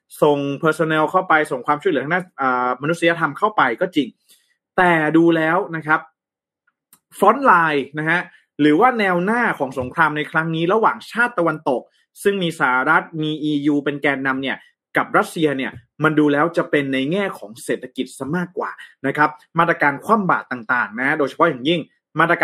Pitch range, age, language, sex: 145-180 Hz, 20-39, Thai, male